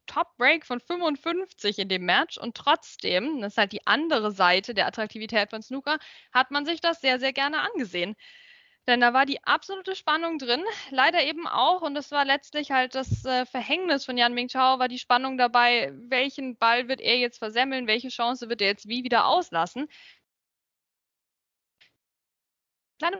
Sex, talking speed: female, 170 wpm